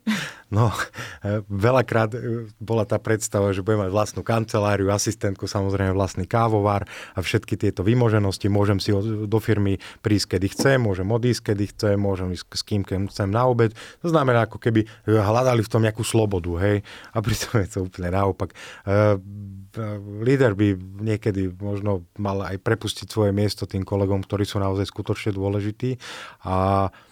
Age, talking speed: 30-49, 155 wpm